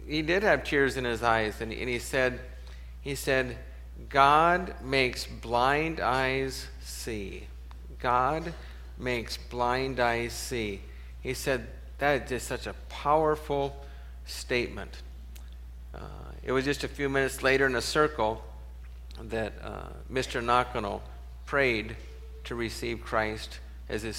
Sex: male